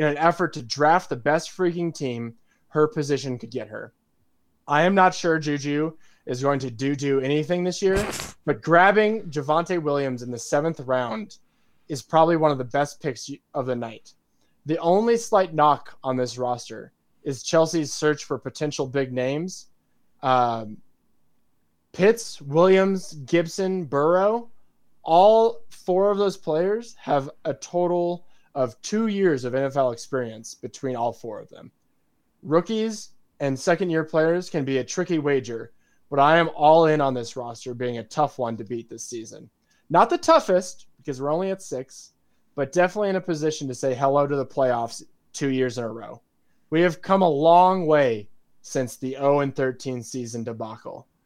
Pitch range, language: 130-175 Hz, English